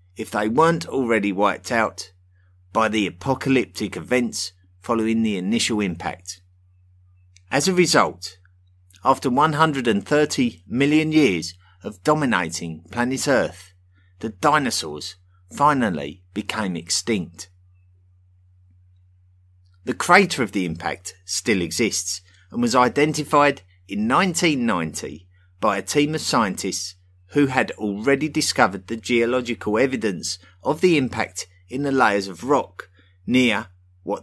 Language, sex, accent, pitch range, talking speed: English, male, British, 90-125 Hz, 110 wpm